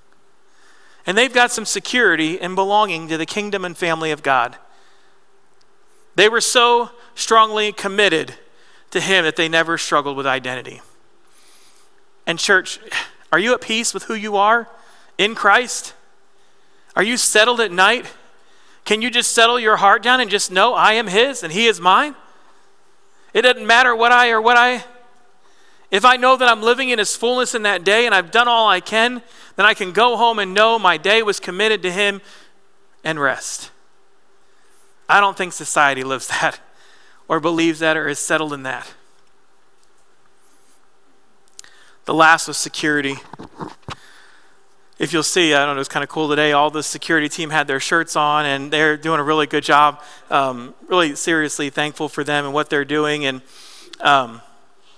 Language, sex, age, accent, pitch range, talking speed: Italian, male, 40-59, American, 155-240 Hz, 170 wpm